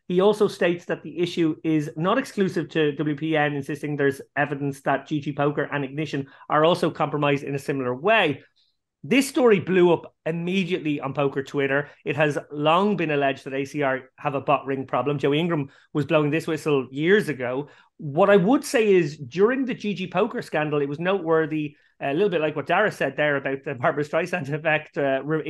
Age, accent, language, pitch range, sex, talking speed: 30-49, Irish, English, 145-180 Hz, male, 190 wpm